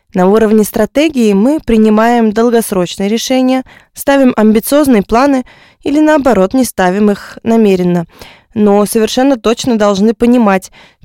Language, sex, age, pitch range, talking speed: Russian, female, 20-39, 195-235 Hz, 115 wpm